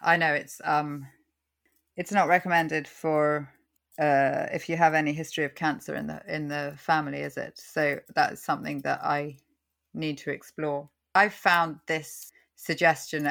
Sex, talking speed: female, 160 wpm